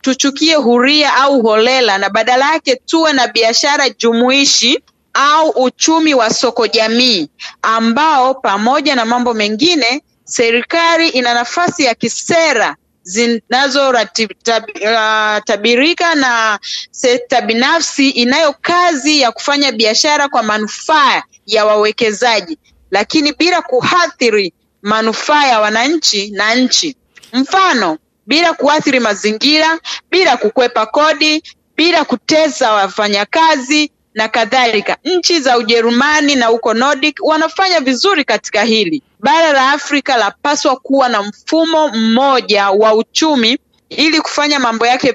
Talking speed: 110 wpm